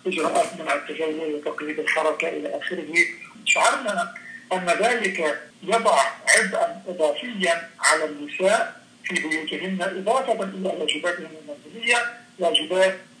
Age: 50-69